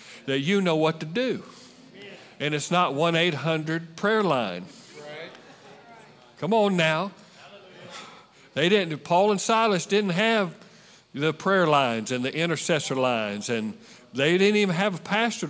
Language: English